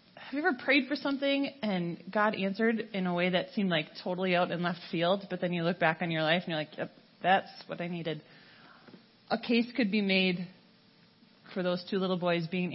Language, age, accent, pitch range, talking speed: English, 30-49, American, 180-255 Hz, 220 wpm